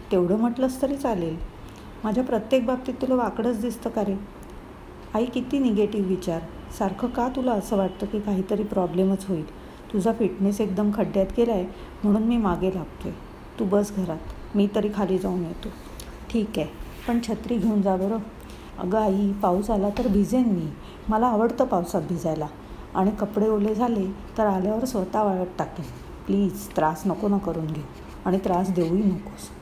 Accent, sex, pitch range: native, female, 185-220 Hz